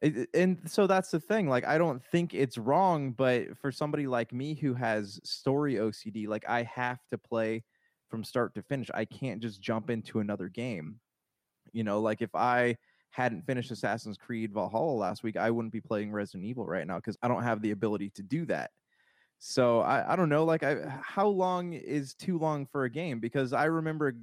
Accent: American